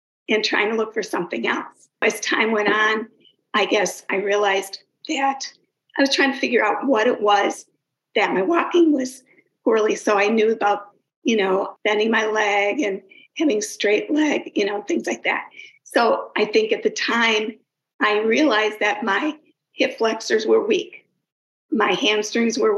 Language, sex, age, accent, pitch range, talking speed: English, female, 50-69, American, 210-305 Hz, 170 wpm